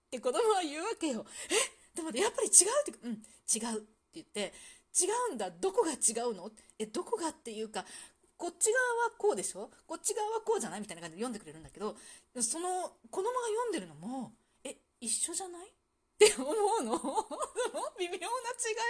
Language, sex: Japanese, female